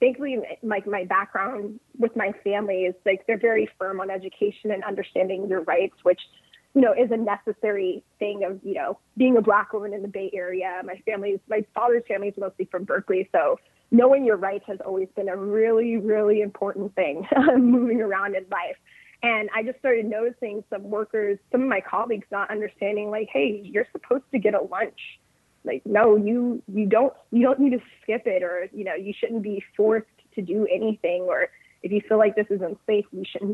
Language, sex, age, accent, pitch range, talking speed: English, female, 20-39, American, 195-230 Hz, 205 wpm